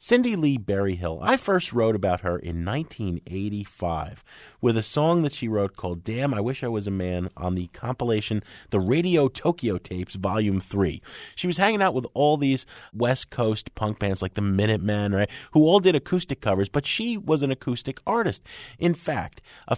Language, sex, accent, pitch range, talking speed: English, male, American, 95-140 Hz, 190 wpm